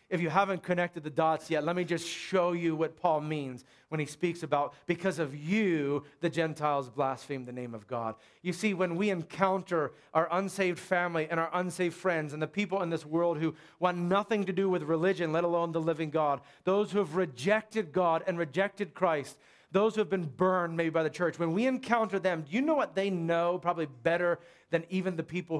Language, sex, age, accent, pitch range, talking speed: English, male, 40-59, American, 150-195 Hz, 215 wpm